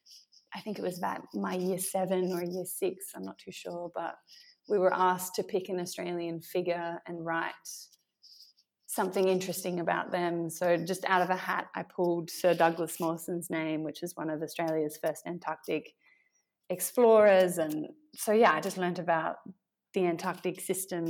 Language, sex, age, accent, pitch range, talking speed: English, female, 20-39, Australian, 165-185 Hz, 170 wpm